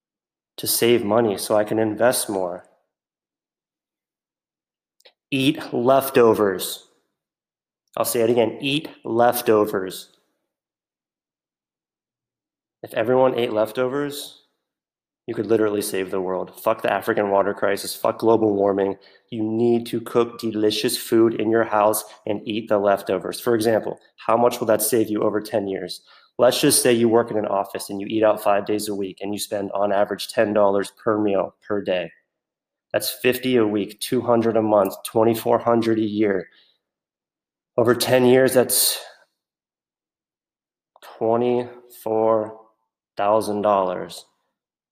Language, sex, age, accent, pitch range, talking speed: English, male, 30-49, American, 105-120 Hz, 130 wpm